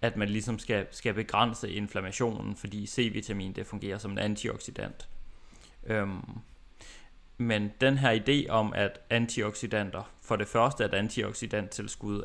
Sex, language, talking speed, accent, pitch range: male, Danish, 130 wpm, native, 105-125 Hz